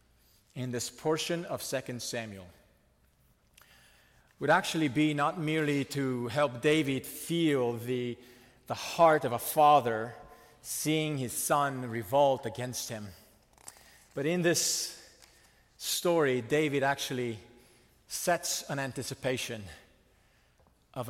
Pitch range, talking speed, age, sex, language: 110-155 Hz, 105 wpm, 40-59, male, English